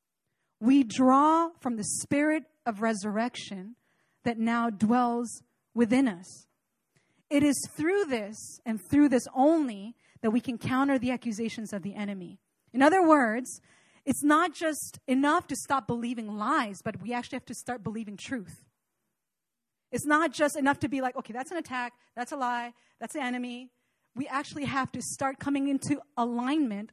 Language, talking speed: English, 165 wpm